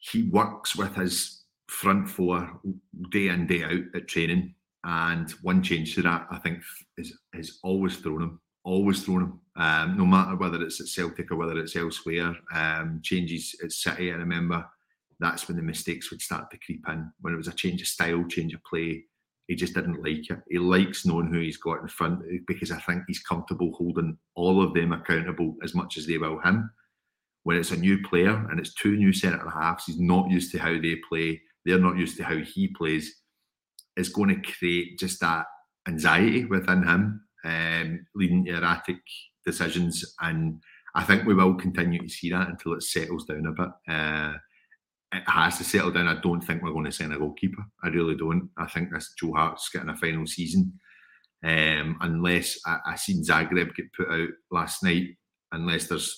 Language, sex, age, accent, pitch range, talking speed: English, male, 40-59, British, 80-90 Hz, 195 wpm